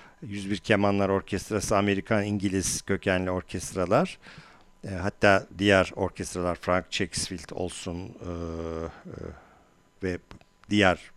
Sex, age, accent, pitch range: male, 50-69, native, 85-105 Hz